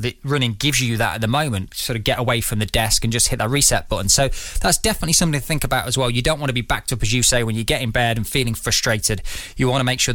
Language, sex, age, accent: English, male, 20-39, British